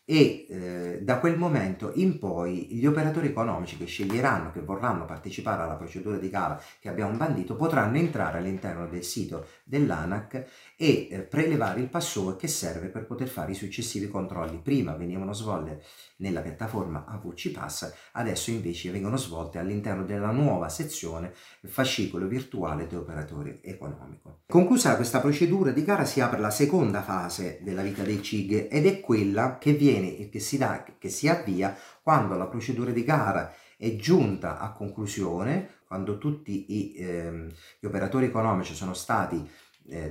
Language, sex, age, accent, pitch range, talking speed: Italian, male, 40-59, native, 90-130 Hz, 155 wpm